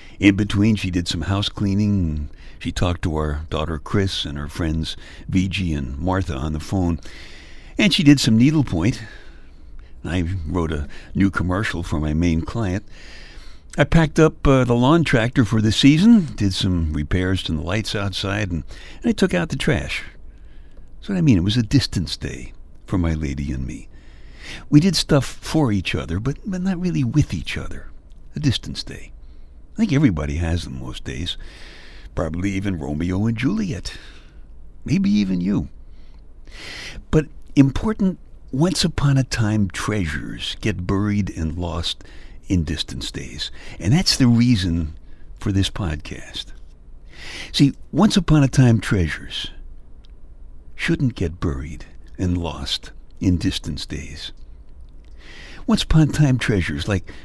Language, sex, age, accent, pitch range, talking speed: English, male, 60-79, American, 75-115 Hz, 150 wpm